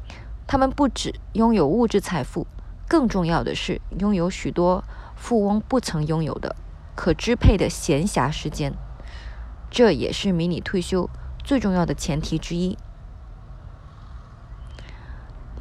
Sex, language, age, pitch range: female, Chinese, 20-39, 150-205 Hz